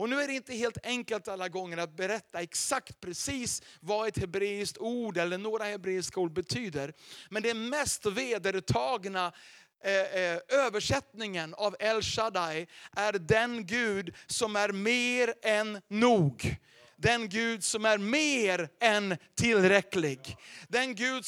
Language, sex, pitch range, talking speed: Swedish, male, 185-255 Hz, 135 wpm